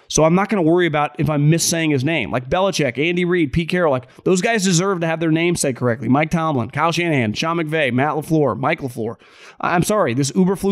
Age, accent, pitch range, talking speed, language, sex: 30-49, American, 130-160 Hz, 240 wpm, English, male